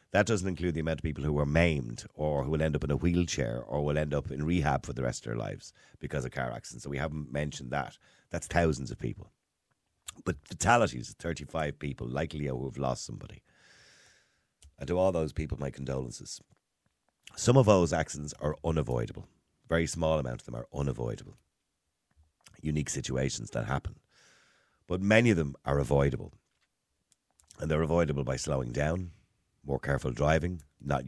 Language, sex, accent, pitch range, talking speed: English, male, Irish, 70-85 Hz, 180 wpm